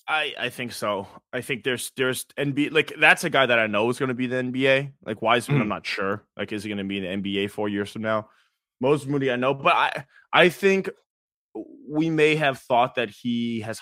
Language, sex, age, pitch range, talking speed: English, male, 20-39, 100-140 Hz, 240 wpm